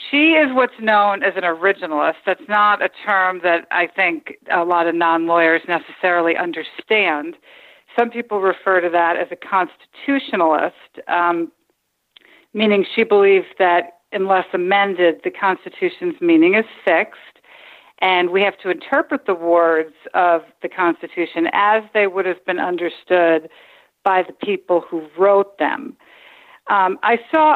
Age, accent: 50-69, American